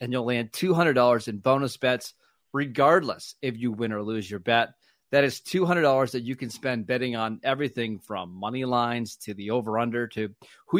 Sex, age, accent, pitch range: male, 30-49, American, 115-145 Hz